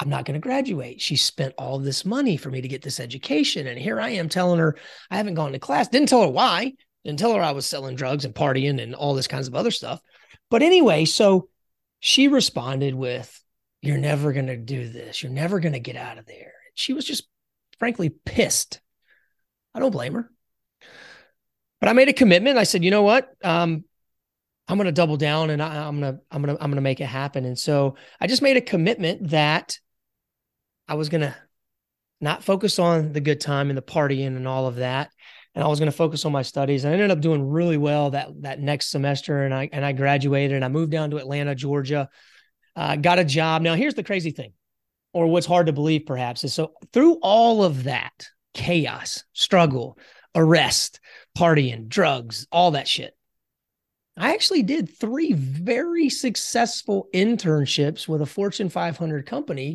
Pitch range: 140-195 Hz